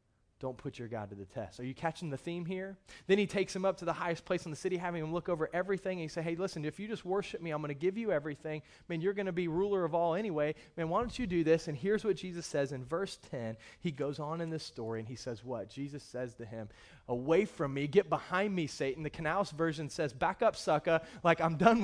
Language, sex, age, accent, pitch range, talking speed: English, male, 30-49, American, 115-175 Hz, 275 wpm